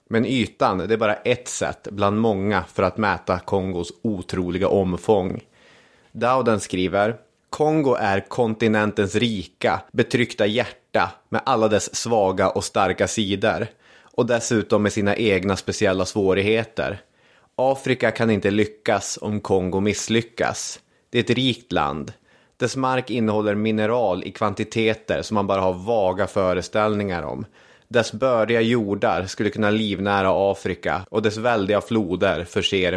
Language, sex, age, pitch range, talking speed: Swedish, male, 30-49, 100-115 Hz, 135 wpm